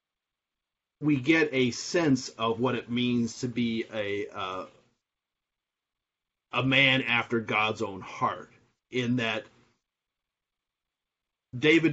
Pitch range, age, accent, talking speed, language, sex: 110-130 Hz, 40-59, American, 105 wpm, English, male